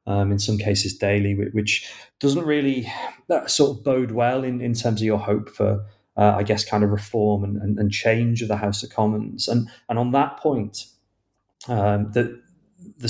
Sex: male